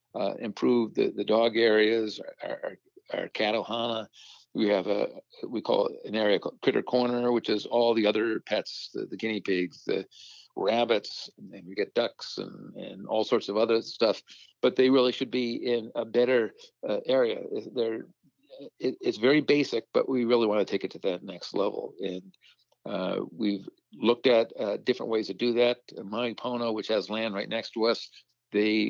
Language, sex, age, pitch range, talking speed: English, male, 50-69, 105-125 Hz, 190 wpm